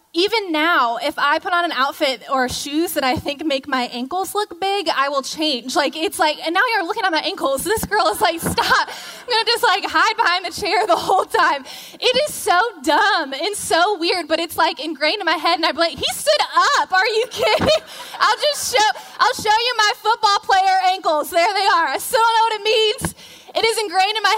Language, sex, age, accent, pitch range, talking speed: English, female, 10-29, American, 275-375 Hz, 235 wpm